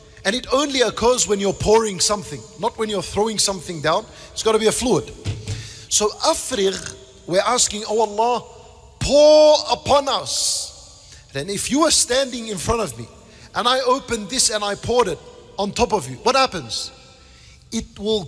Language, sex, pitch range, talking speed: English, male, 185-265 Hz, 175 wpm